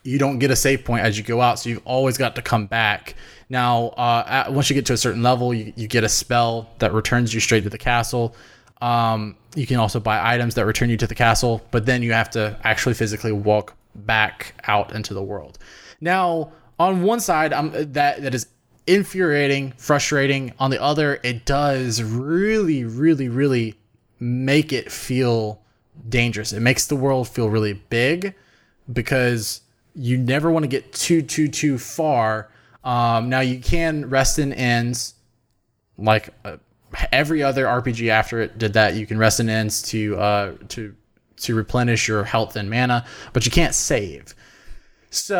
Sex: male